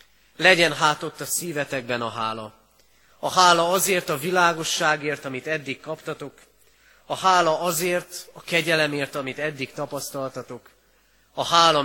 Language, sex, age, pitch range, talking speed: Hungarian, male, 30-49, 120-160 Hz, 120 wpm